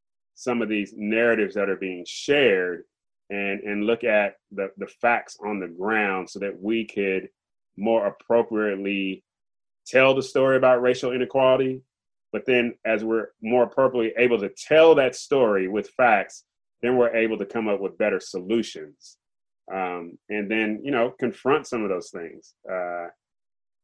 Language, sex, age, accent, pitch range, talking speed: English, male, 30-49, American, 100-130 Hz, 160 wpm